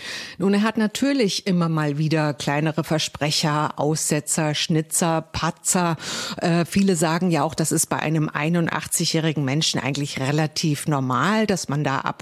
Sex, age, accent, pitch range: female, 50-69, German, 155-180 Hz